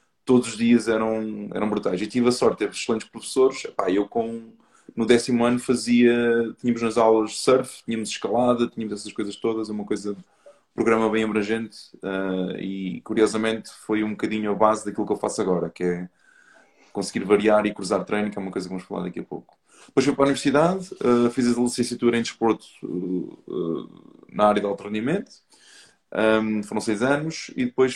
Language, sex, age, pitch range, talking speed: English, male, 20-39, 100-125 Hz, 190 wpm